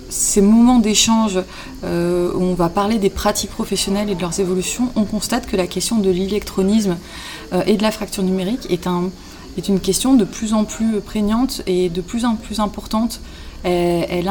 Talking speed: 175 wpm